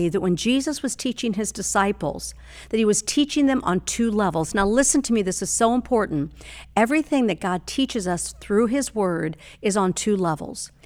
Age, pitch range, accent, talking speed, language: 50-69, 180-230 Hz, American, 195 wpm, English